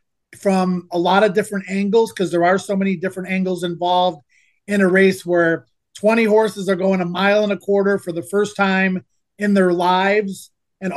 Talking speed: 190 wpm